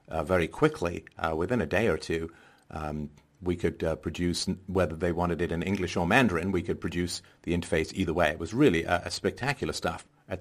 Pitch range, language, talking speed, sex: 85-95 Hz, English, 215 wpm, male